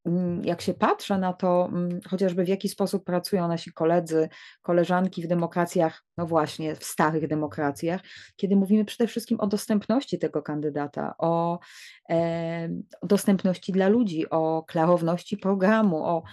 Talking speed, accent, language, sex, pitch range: 130 wpm, Polish, English, female, 170-200 Hz